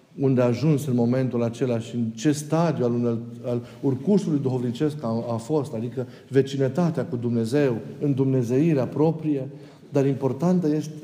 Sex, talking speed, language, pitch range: male, 140 wpm, Romanian, 125-155 Hz